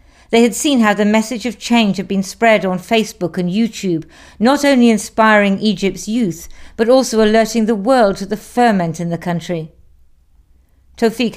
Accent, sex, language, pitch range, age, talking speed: British, female, English, 175-225 Hz, 50-69, 170 wpm